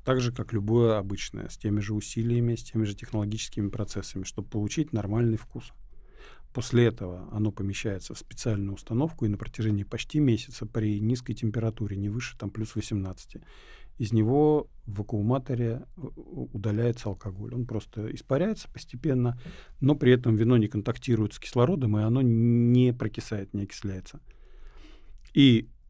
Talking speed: 145 wpm